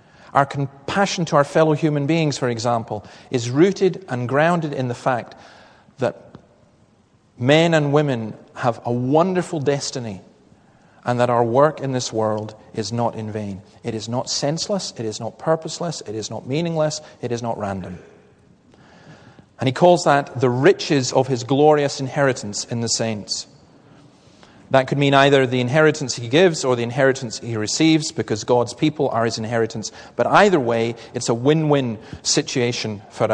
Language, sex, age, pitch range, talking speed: English, male, 40-59, 115-150 Hz, 165 wpm